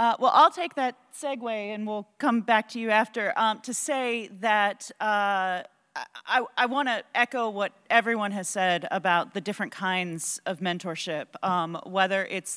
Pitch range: 175-230 Hz